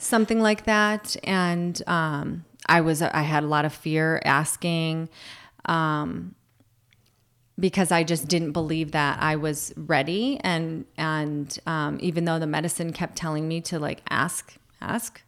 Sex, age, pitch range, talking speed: female, 30-49, 160-200 Hz, 150 wpm